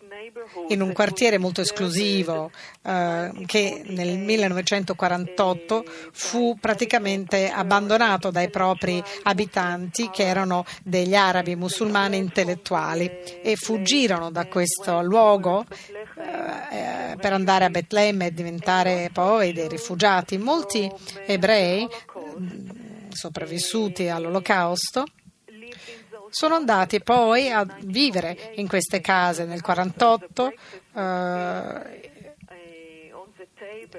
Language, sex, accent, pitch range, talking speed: Italian, female, native, 180-215 Hz, 90 wpm